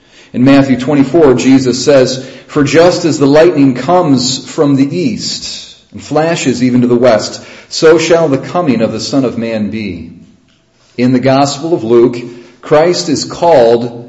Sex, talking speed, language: male, 160 wpm, English